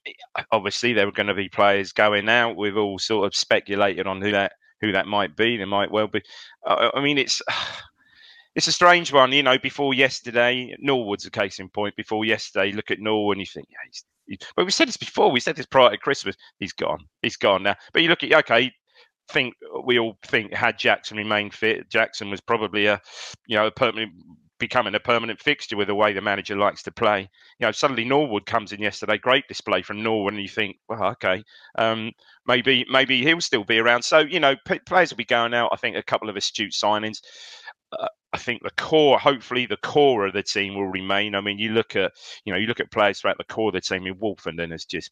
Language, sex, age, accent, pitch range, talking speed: English, male, 30-49, British, 100-125 Hz, 235 wpm